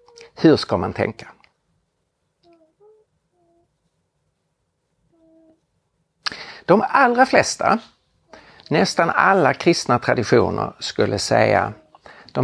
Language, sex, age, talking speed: Swedish, male, 60-79, 70 wpm